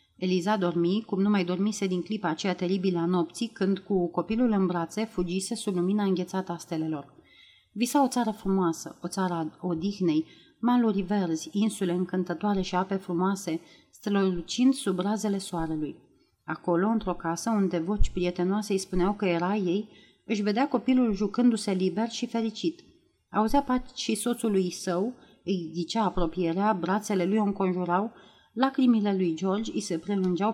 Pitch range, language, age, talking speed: 175-220 Hz, Romanian, 30-49, 150 wpm